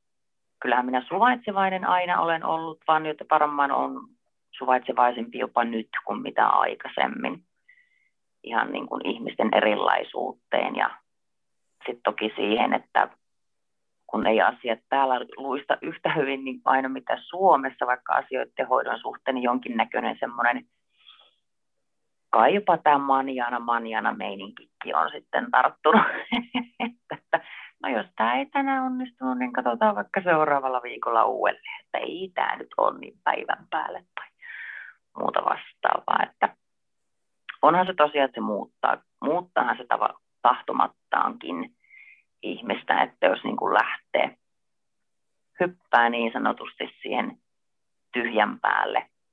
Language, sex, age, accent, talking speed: Finnish, female, 30-49, native, 115 wpm